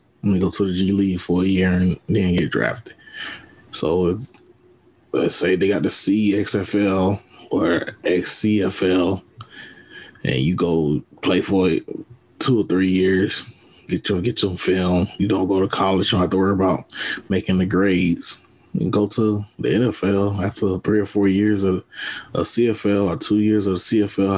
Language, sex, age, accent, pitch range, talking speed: English, male, 20-39, American, 95-105 Hz, 170 wpm